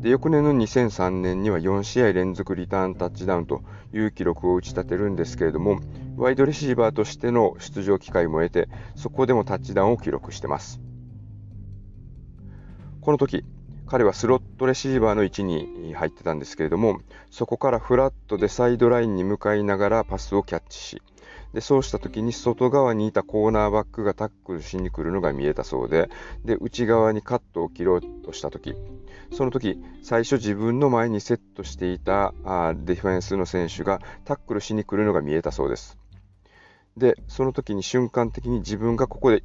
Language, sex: Japanese, male